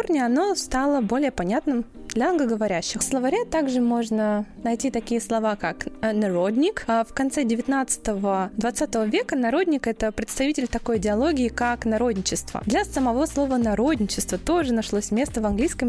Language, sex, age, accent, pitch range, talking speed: Russian, female, 20-39, native, 215-285 Hz, 135 wpm